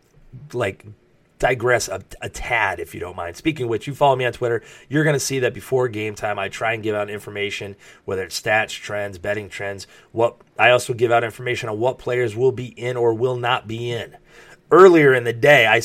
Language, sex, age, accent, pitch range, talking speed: English, male, 30-49, American, 105-125 Hz, 225 wpm